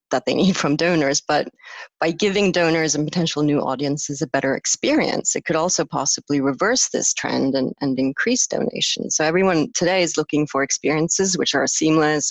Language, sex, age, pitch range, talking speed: English, female, 30-49, 150-185 Hz, 180 wpm